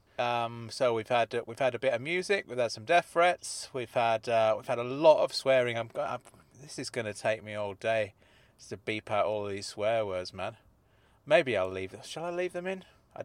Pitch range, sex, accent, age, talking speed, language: 105-140 Hz, male, British, 30-49, 230 wpm, English